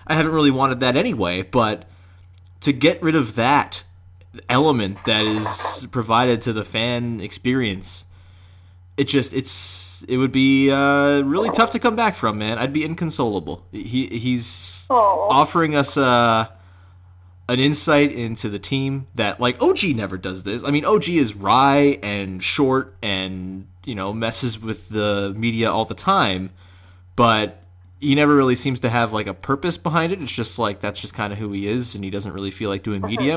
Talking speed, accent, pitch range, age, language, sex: 175 wpm, American, 95-130 Hz, 30-49, English, male